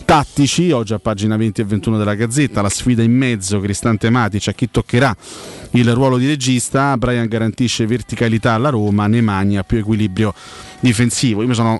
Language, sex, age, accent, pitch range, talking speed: Italian, male, 30-49, native, 100-120 Hz, 175 wpm